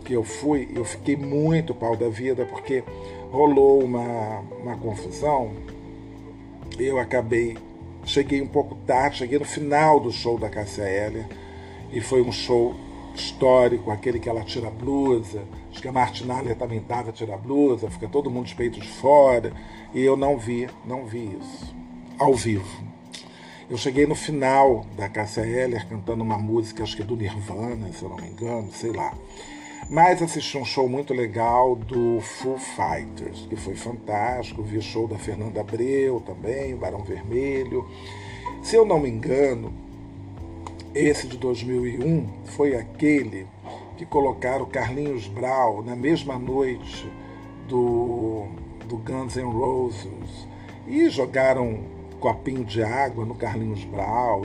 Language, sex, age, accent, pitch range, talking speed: Portuguese, male, 40-59, Brazilian, 105-130 Hz, 155 wpm